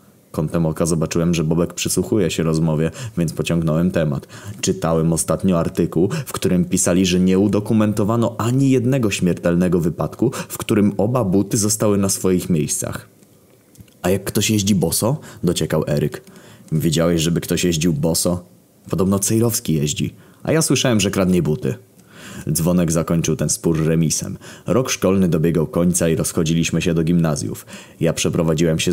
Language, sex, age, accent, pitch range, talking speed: Polish, male, 20-39, native, 80-95 Hz, 145 wpm